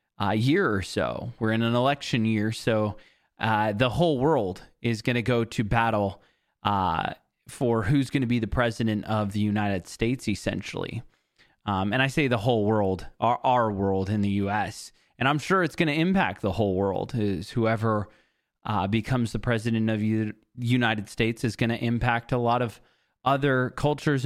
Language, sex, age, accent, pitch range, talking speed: English, male, 20-39, American, 105-130 Hz, 190 wpm